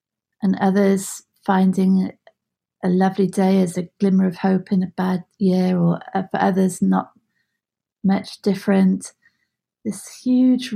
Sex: female